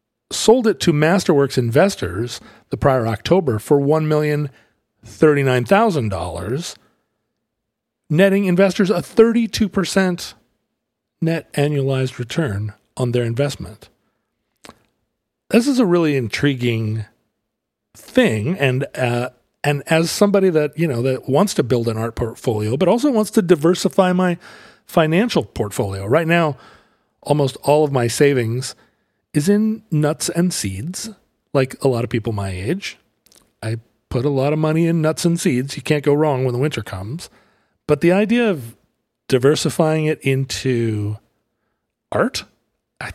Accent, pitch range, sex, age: American, 125-180 Hz, male, 40-59